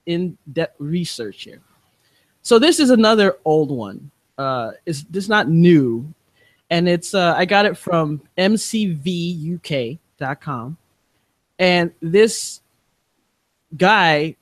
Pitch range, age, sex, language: 160-215 Hz, 20-39, male, English